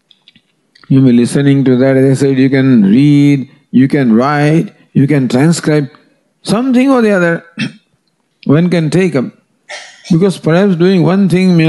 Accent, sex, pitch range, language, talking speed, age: Indian, male, 145-195 Hz, English, 165 wpm, 50-69